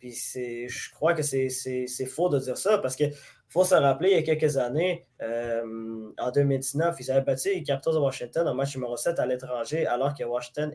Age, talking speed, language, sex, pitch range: 20-39, 230 wpm, French, male, 125-155 Hz